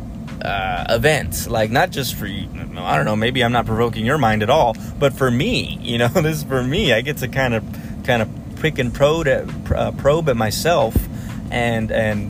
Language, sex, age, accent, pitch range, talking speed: English, male, 20-39, American, 110-140 Hz, 210 wpm